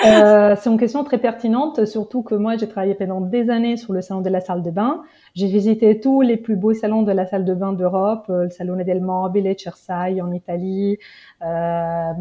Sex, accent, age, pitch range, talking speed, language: female, French, 30-49, 195-240 Hz, 210 wpm, French